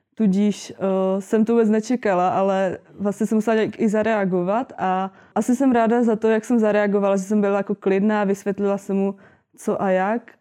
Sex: female